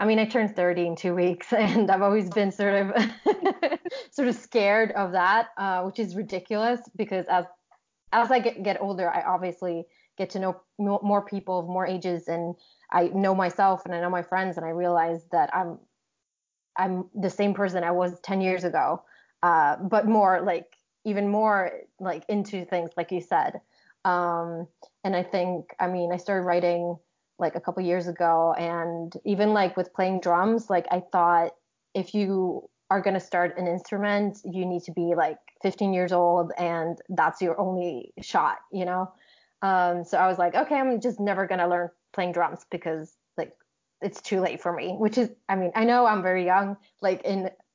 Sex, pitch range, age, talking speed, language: female, 175-205 Hz, 20-39, 190 wpm, English